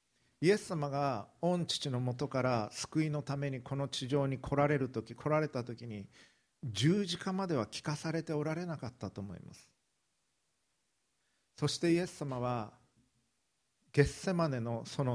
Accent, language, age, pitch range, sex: native, Japanese, 50-69, 120-155 Hz, male